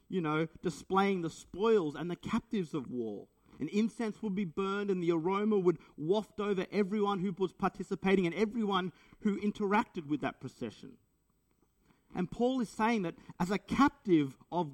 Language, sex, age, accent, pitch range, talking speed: English, male, 50-69, Australian, 175-220 Hz, 165 wpm